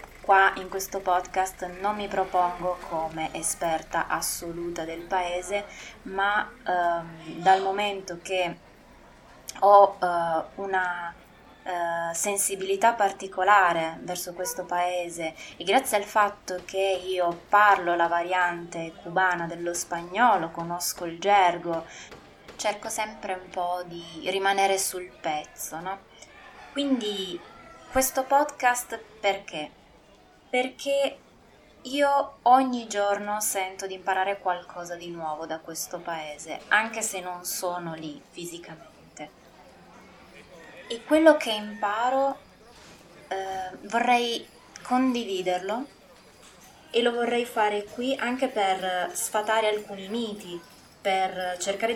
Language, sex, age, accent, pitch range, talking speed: Italian, female, 20-39, native, 175-210 Hz, 105 wpm